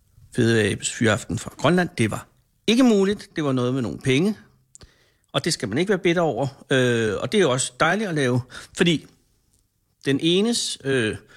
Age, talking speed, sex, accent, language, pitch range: 60-79, 175 wpm, male, native, Danish, 125-165 Hz